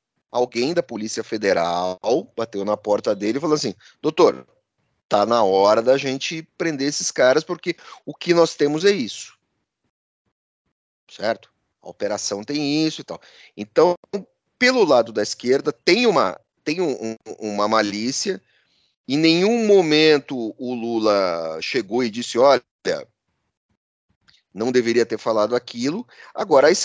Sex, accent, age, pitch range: male, Brazilian, 30-49, 110-165 Hz